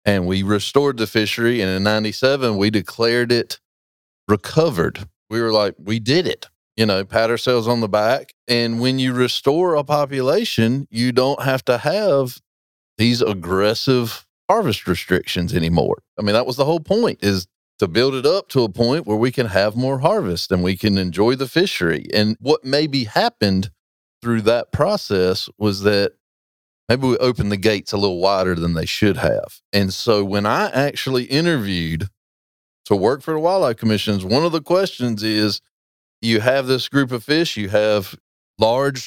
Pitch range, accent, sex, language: 100-130 Hz, American, male, English